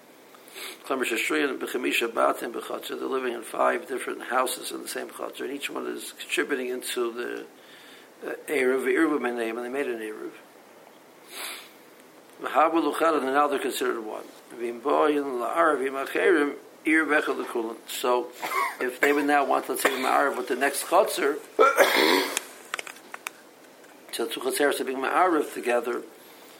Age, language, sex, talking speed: 60-79, English, male, 140 wpm